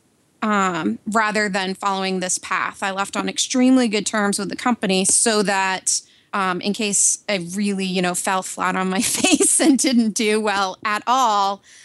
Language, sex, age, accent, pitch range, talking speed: English, female, 20-39, American, 190-220 Hz, 175 wpm